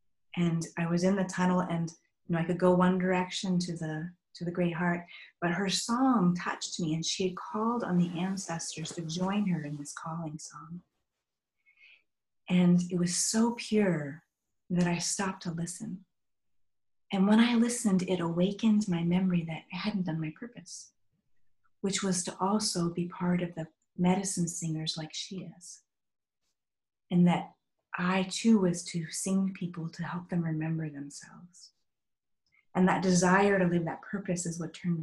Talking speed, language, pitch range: 170 wpm, English, 160-190 Hz